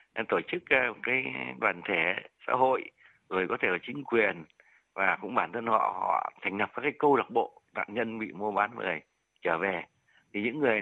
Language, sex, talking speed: Vietnamese, male, 205 wpm